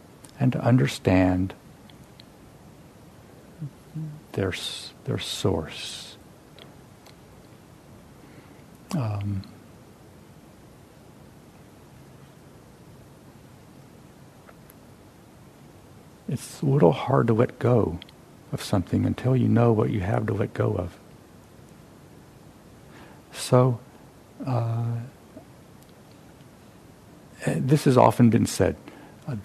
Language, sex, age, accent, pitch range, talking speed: English, male, 60-79, American, 100-130 Hz, 70 wpm